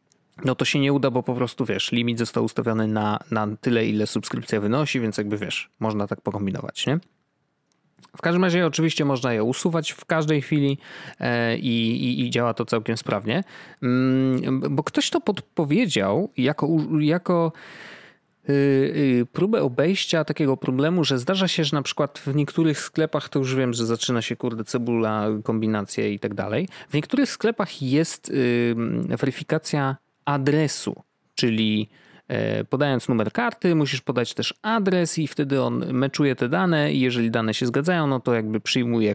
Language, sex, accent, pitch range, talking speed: Polish, male, native, 120-155 Hz, 155 wpm